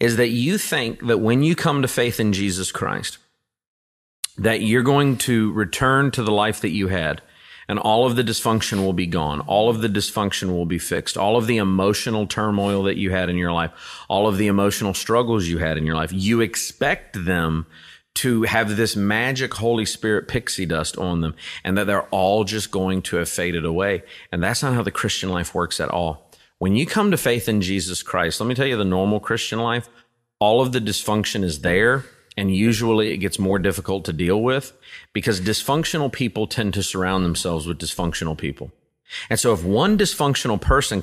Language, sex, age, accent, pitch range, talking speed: English, male, 40-59, American, 95-120 Hz, 205 wpm